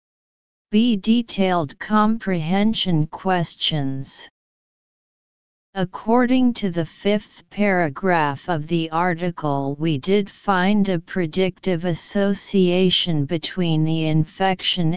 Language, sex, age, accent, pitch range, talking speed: English, female, 40-59, American, 160-200 Hz, 85 wpm